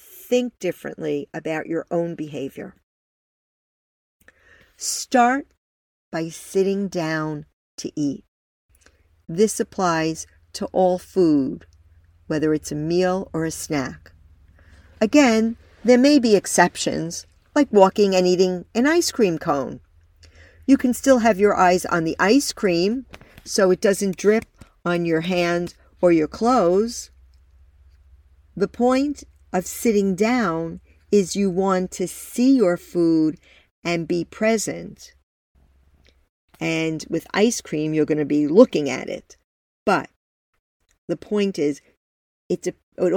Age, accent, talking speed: 50-69, American, 125 wpm